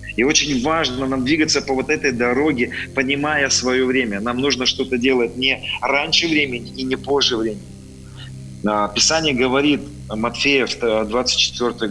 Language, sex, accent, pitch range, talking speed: Russian, male, native, 105-145 Hz, 135 wpm